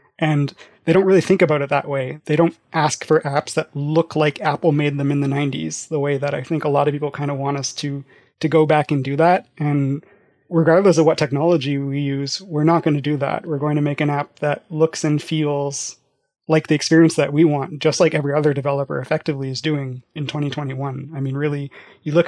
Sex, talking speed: male, 235 wpm